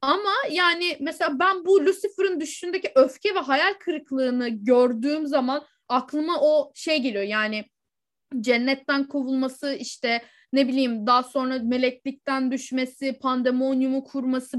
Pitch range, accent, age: 255-350 Hz, native, 10-29